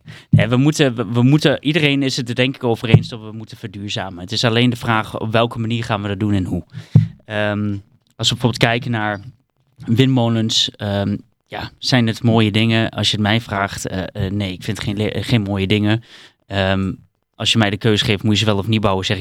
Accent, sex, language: Dutch, male, Dutch